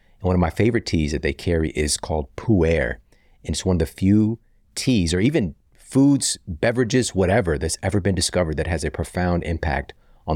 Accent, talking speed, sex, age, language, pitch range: American, 195 wpm, male, 30-49, English, 80-100 Hz